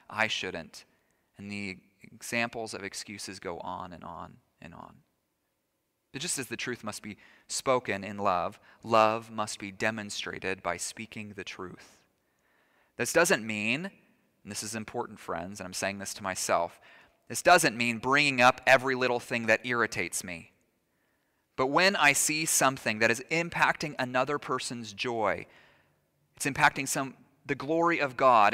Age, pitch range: 30-49, 110-150 Hz